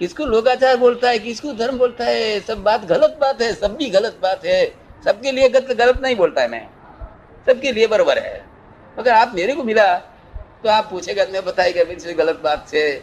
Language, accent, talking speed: Hindi, native, 120 wpm